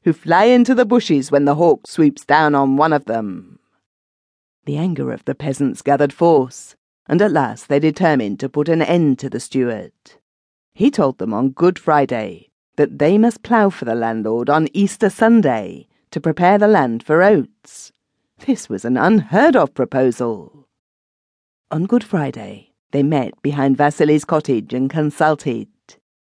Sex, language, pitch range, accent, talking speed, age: female, English, 130-200 Hz, British, 160 wpm, 40-59